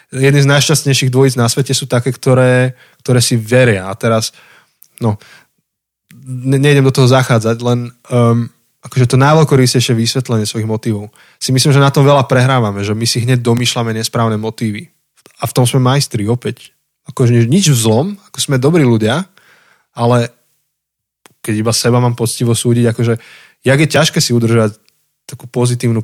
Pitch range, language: 110-140 Hz, Slovak